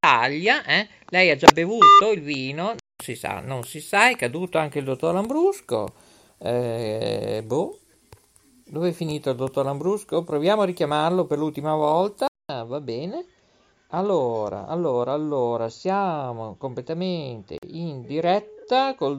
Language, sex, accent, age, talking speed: Italian, male, native, 50-69, 135 wpm